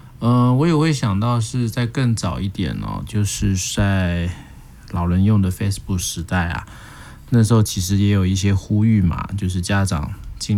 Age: 20-39